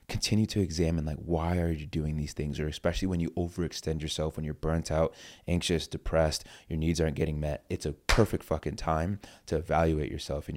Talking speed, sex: 205 wpm, male